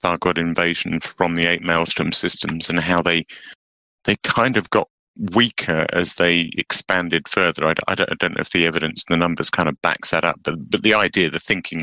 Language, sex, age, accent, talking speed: English, male, 30-49, British, 220 wpm